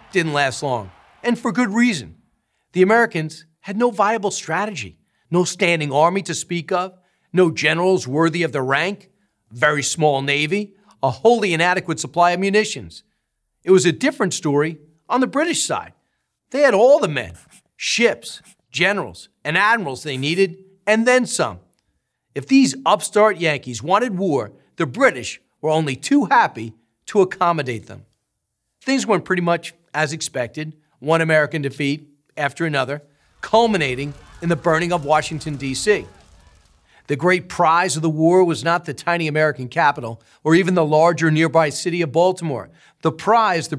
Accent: American